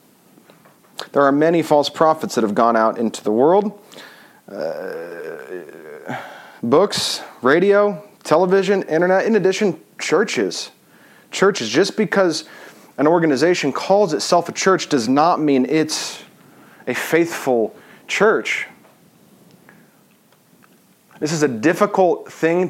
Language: English